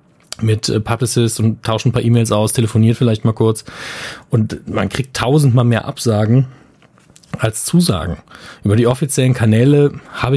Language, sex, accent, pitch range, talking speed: German, male, German, 110-130 Hz, 145 wpm